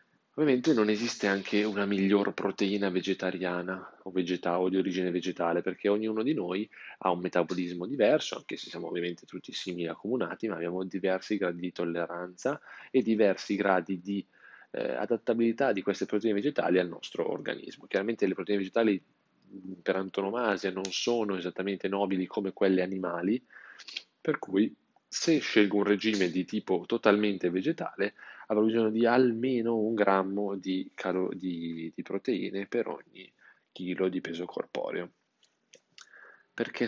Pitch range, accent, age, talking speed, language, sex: 90-105 Hz, native, 20-39, 145 wpm, Italian, male